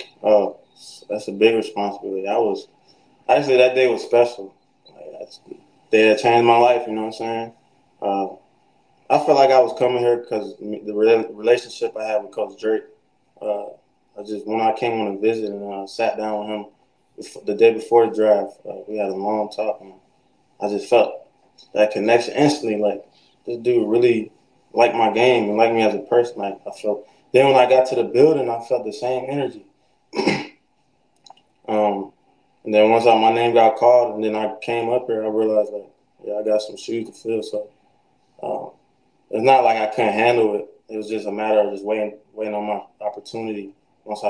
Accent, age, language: American, 20-39, English